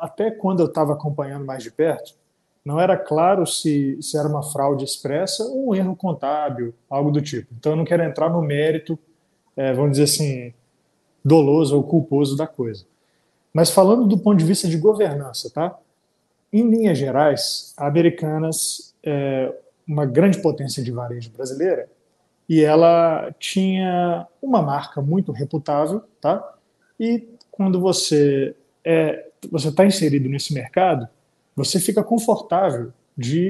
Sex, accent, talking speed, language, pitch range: male, Brazilian, 140 wpm, Portuguese, 145-190 Hz